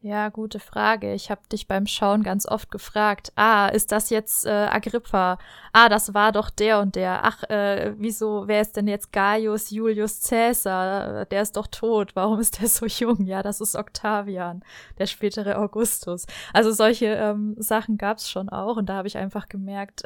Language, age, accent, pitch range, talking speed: German, 20-39, German, 190-220 Hz, 190 wpm